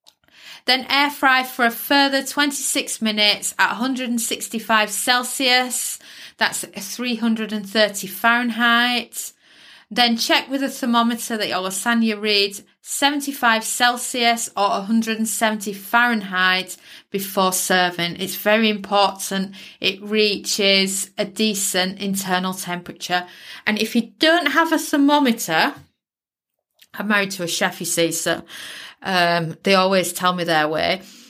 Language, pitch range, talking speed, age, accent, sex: English, 190-245 Hz, 115 wpm, 30-49, British, female